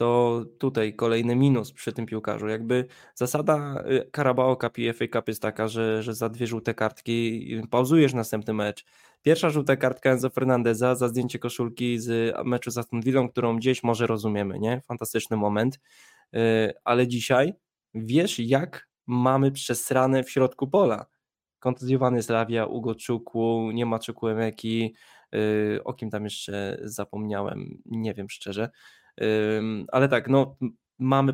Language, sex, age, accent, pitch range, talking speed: Polish, male, 20-39, native, 115-130 Hz, 135 wpm